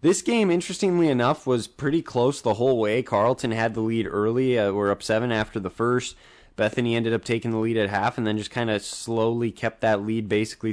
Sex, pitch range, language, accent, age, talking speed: male, 105-125 Hz, English, American, 20-39, 225 wpm